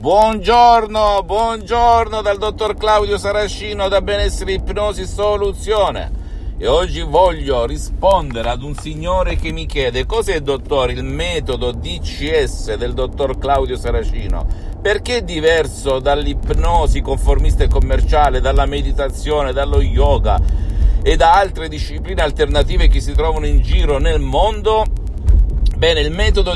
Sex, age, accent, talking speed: male, 50-69, native, 125 wpm